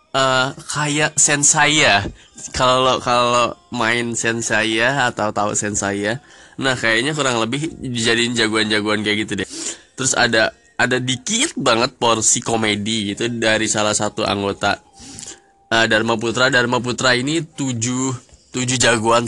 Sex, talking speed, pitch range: male, 135 wpm, 110-130 Hz